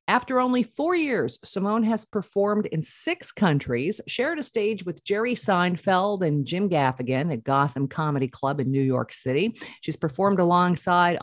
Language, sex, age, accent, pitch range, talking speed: English, female, 50-69, American, 145-220 Hz, 160 wpm